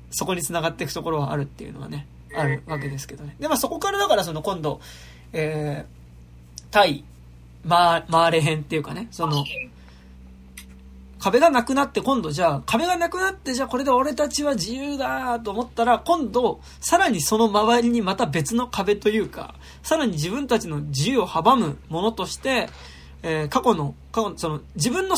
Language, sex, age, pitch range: Japanese, male, 20-39, 155-255 Hz